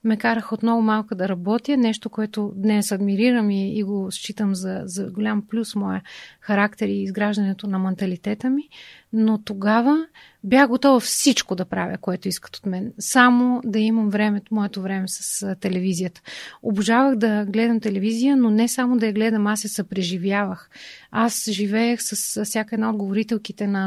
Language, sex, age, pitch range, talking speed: Bulgarian, female, 30-49, 205-230 Hz, 165 wpm